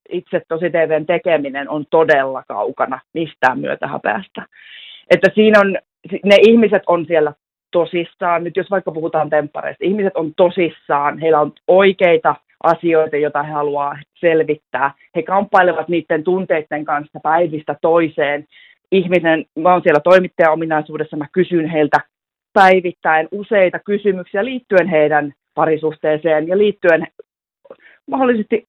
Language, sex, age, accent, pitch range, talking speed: Finnish, female, 30-49, native, 155-200 Hz, 120 wpm